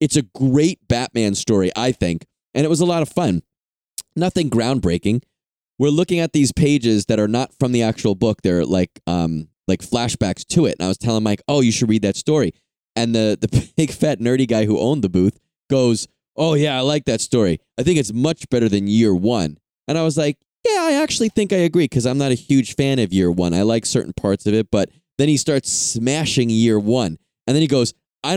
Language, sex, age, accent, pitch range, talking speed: English, male, 20-39, American, 110-150 Hz, 230 wpm